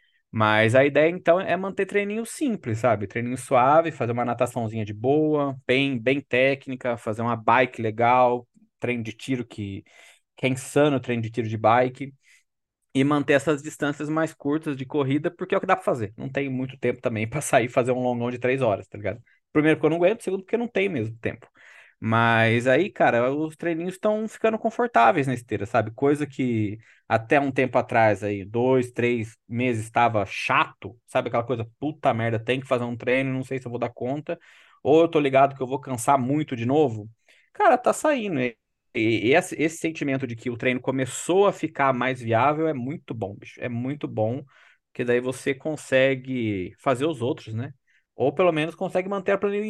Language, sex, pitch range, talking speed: Portuguese, male, 120-150 Hz, 200 wpm